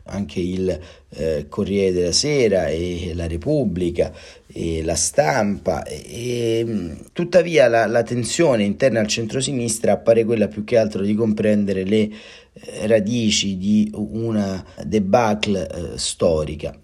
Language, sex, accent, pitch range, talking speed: Italian, male, native, 95-115 Hz, 125 wpm